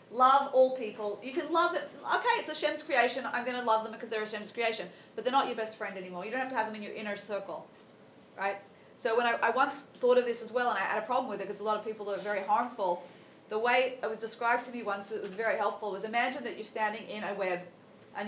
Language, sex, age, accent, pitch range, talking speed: English, female, 40-59, Australian, 210-250 Hz, 285 wpm